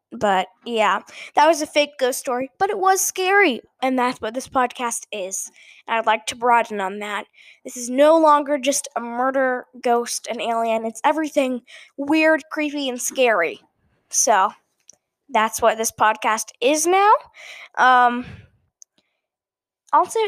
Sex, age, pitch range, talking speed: female, 10-29, 235-320 Hz, 150 wpm